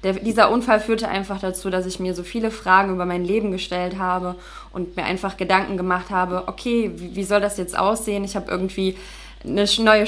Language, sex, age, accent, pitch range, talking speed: German, female, 20-39, German, 185-215 Hz, 210 wpm